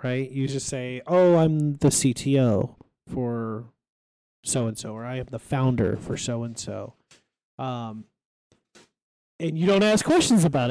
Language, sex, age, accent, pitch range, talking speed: English, male, 30-49, American, 125-165 Hz, 135 wpm